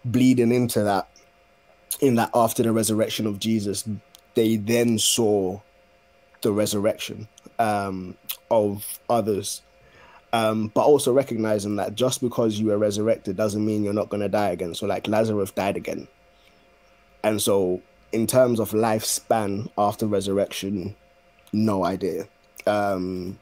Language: English